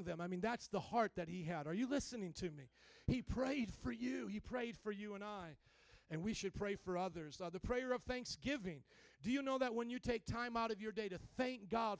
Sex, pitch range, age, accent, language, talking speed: male, 210-275 Hz, 40-59, American, English, 250 wpm